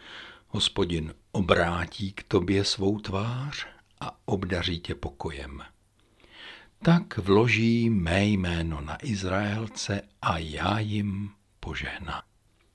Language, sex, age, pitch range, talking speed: Czech, male, 60-79, 85-120 Hz, 95 wpm